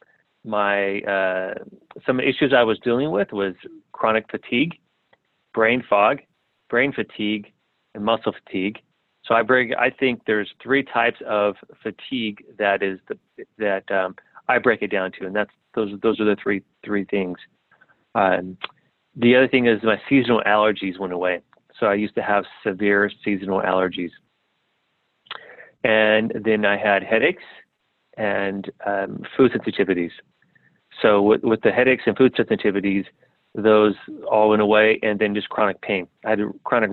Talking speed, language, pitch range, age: 155 wpm, English, 100-115 Hz, 30-49